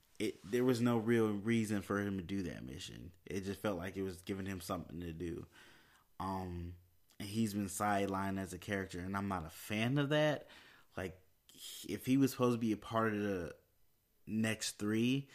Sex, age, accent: male, 20-39, American